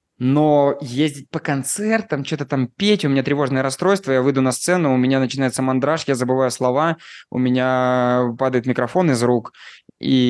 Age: 20-39